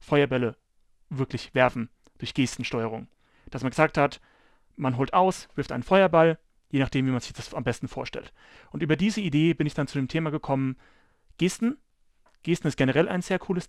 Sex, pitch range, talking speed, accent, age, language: male, 135-165 Hz, 185 wpm, German, 30-49, German